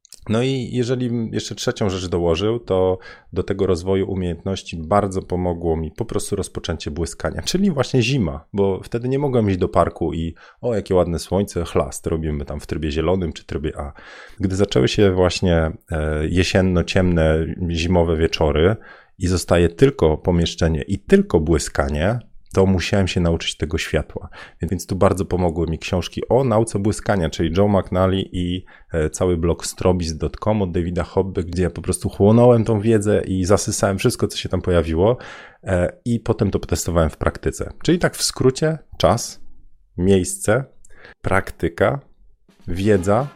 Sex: male